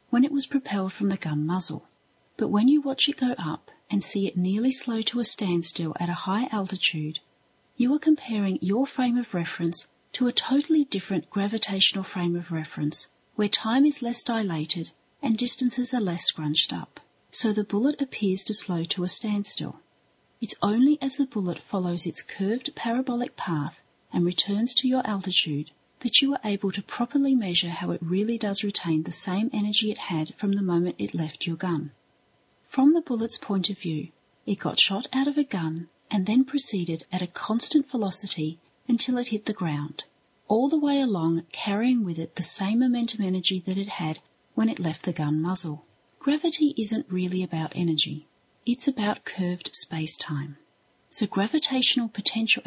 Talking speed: 180 wpm